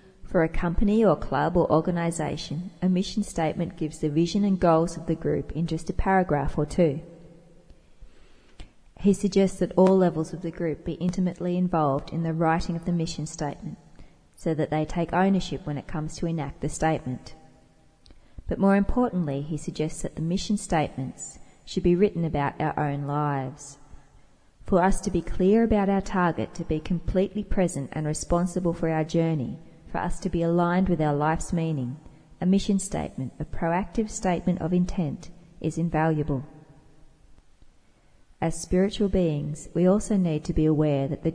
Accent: Australian